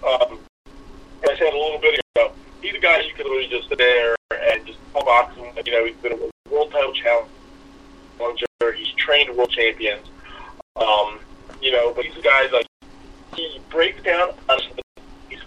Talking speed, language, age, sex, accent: 180 wpm, English, 30-49, male, American